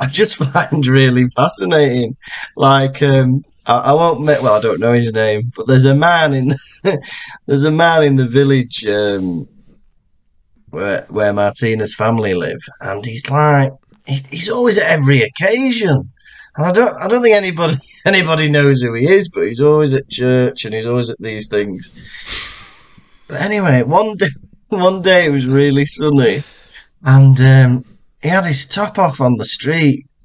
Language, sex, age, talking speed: English, male, 20-39, 170 wpm